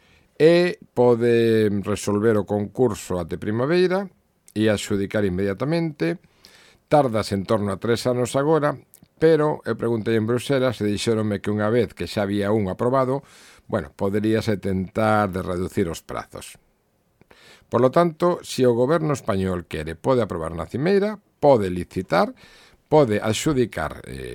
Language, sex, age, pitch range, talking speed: Portuguese, male, 50-69, 100-165 Hz, 140 wpm